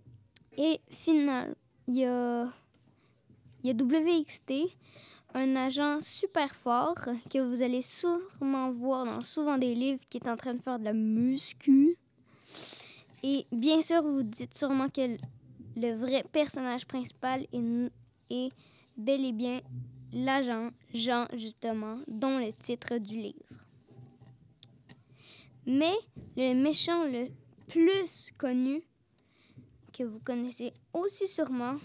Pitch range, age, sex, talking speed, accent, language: 220-275 Hz, 20-39, female, 120 wpm, Canadian, French